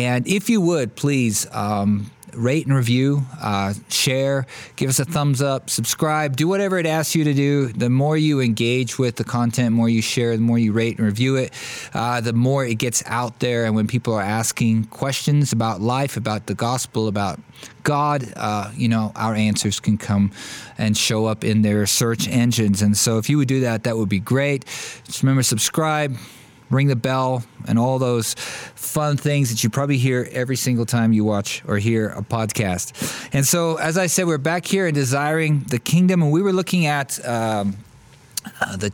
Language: English